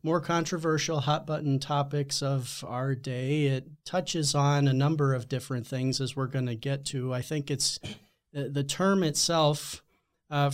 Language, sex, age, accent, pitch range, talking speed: English, male, 40-59, American, 130-160 Hz, 165 wpm